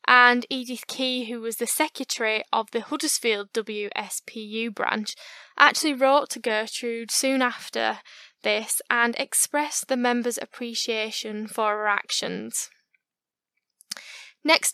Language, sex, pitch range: English, female, 230-270 Hz